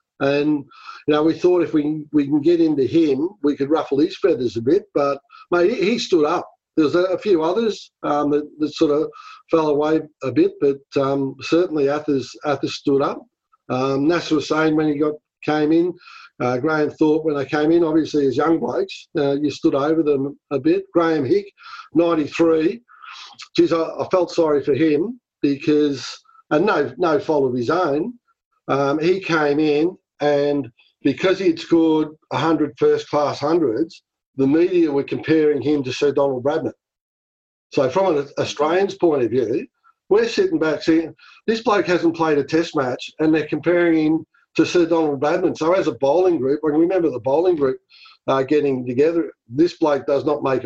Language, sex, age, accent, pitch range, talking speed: English, male, 50-69, Australian, 145-195 Hz, 180 wpm